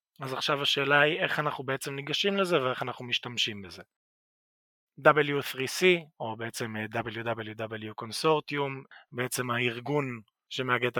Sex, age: male, 30-49